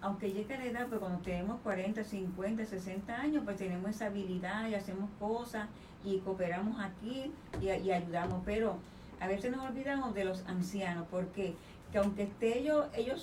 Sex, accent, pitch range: female, American, 190-230 Hz